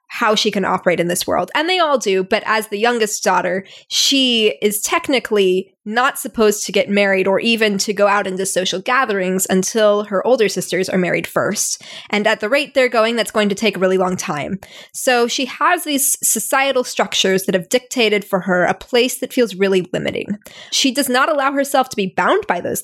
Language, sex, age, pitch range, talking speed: English, female, 10-29, 190-260 Hz, 210 wpm